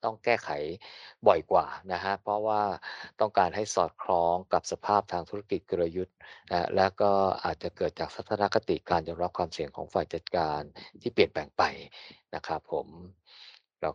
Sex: male